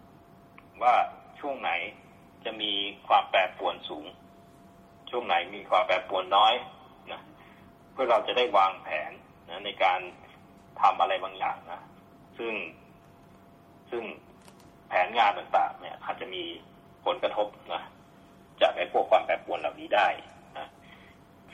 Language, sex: Thai, male